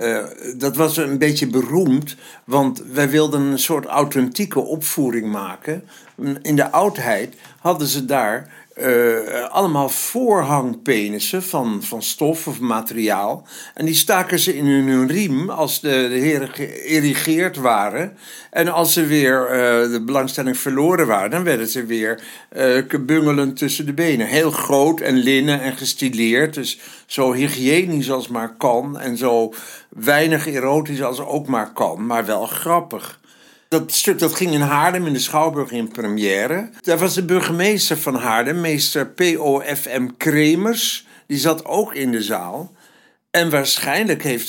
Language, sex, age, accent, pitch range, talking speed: English, male, 60-79, Dutch, 130-160 Hz, 150 wpm